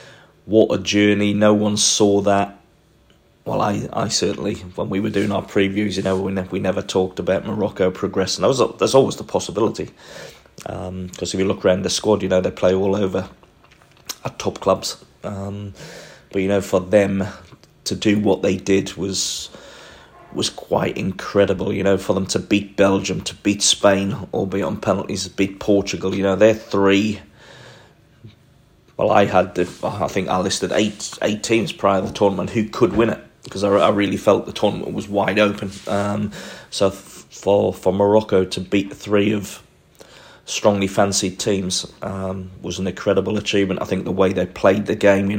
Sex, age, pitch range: male, 30-49, 95-105 Hz